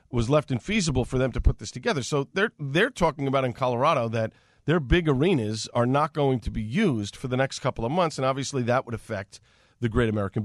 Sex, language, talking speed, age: male, English, 230 wpm, 40-59